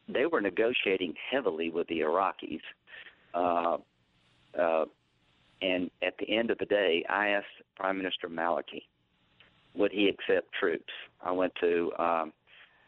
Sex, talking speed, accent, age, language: male, 135 wpm, American, 50-69, English